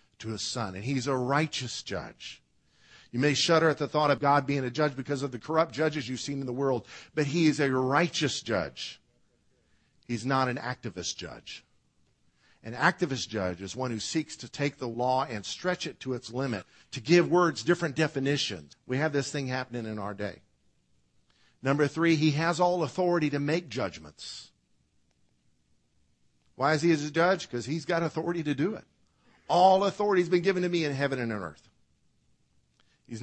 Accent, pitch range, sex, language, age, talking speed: American, 110-155 Hz, male, English, 50-69, 190 wpm